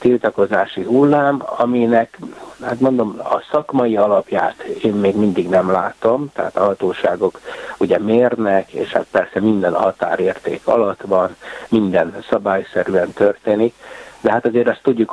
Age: 60-79